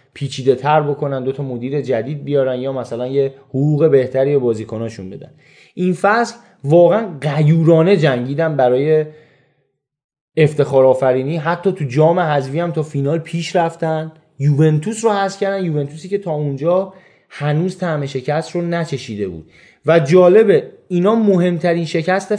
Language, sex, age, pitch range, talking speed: Persian, male, 20-39, 135-180 Hz, 135 wpm